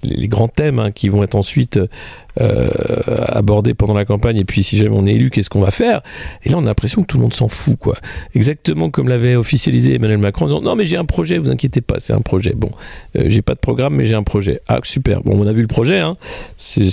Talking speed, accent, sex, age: 265 wpm, French, male, 50-69